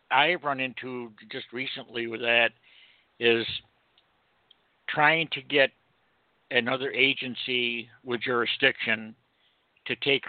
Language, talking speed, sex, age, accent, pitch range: English, 100 wpm, male, 60-79, American, 115-135 Hz